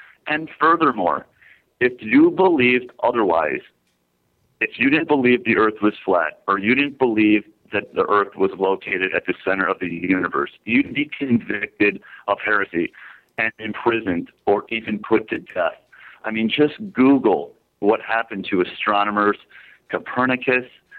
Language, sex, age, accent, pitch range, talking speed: English, male, 40-59, American, 105-130 Hz, 145 wpm